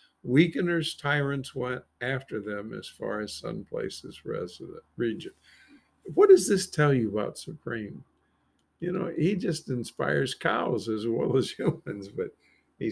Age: 50-69